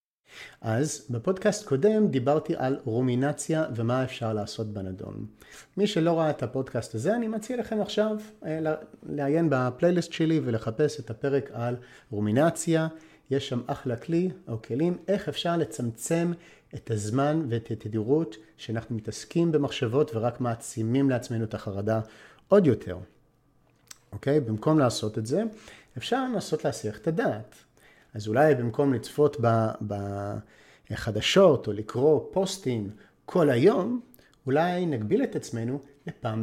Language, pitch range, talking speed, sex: Hebrew, 115-160 Hz, 125 wpm, male